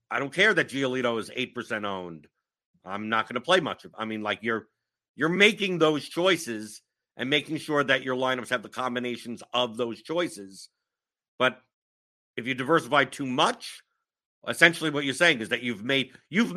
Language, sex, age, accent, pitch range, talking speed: English, male, 50-69, American, 120-160 Hz, 185 wpm